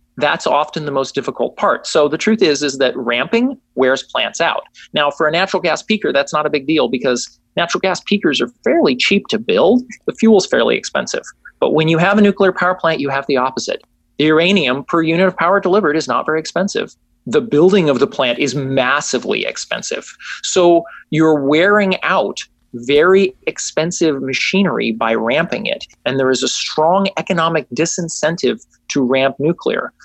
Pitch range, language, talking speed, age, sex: 140-195 Hz, English, 185 wpm, 30-49, male